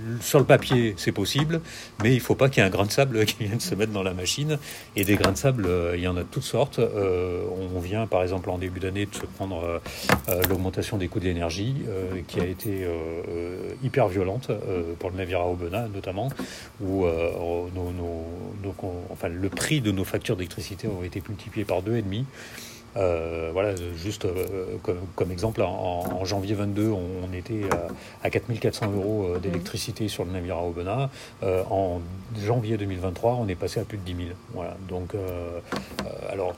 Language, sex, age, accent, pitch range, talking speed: French, male, 40-59, French, 90-115 Hz, 195 wpm